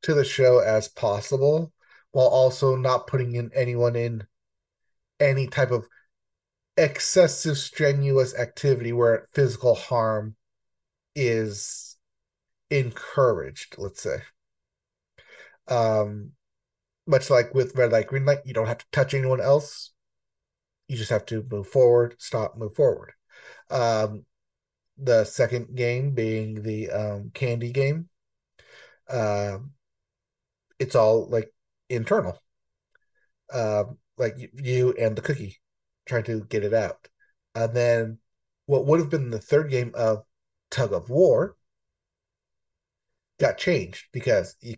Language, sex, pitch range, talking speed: English, male, 110-135 Hz, 120 wpm